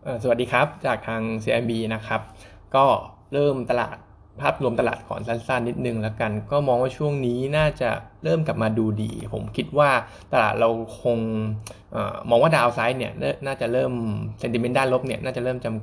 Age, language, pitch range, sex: 20-39, Thai, 115-140 Hz, male